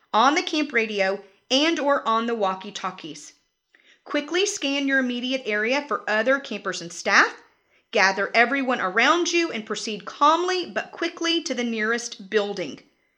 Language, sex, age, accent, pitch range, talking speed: English, female, 30-49, American, 205-280 Hz, 145 wpm